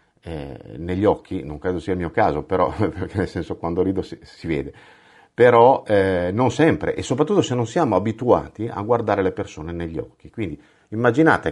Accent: native